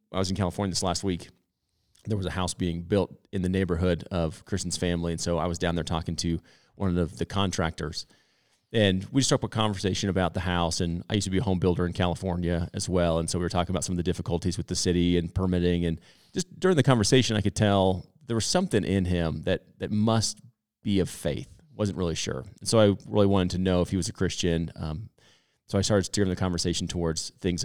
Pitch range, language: 85-105 Hz, English